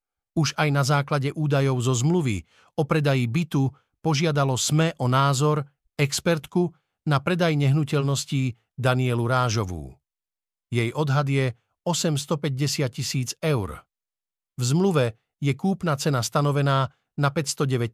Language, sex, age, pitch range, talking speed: Slovak, male, 50-69, 120-150 Hz, 115 wpm